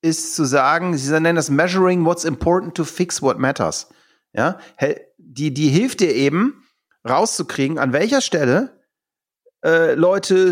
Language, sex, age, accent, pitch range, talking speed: English, male, 40-59, German, 130-180 Hz, 145 wpm